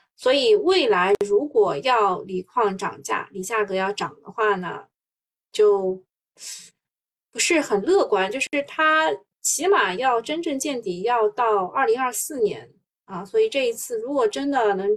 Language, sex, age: Chinese, female, 20-39